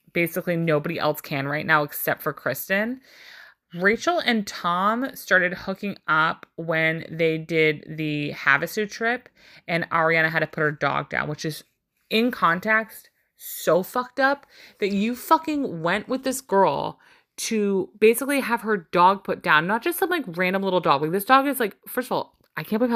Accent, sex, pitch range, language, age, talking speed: American, female, 160-215 Hz, English, 30-49, 180 wpm